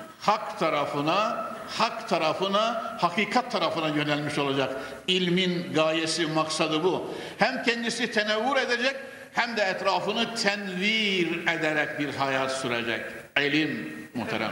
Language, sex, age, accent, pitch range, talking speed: Turkish, male, 60-79, native, 145-205 Hz, 110 wpm